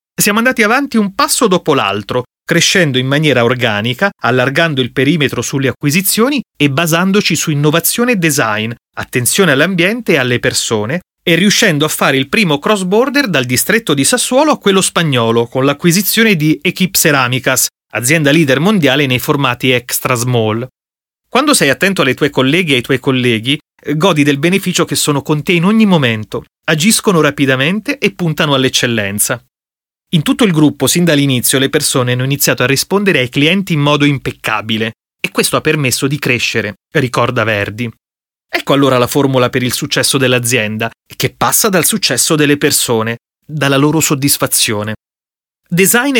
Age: 30-49